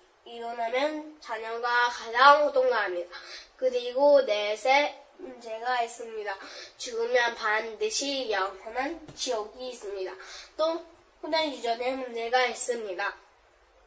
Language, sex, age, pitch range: Korean, female, 20-39, 235-310 Hz